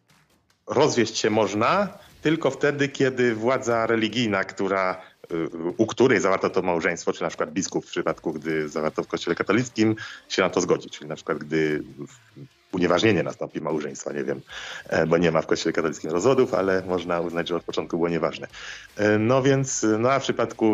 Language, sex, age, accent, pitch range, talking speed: Polish, male, 30-49, native, 95-130 Hz, 170 wpm